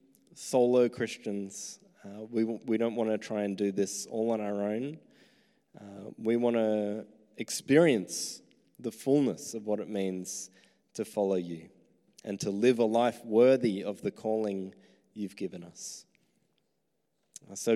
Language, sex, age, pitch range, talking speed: English, male, 20-39, 100-115 Hz, 145 wpm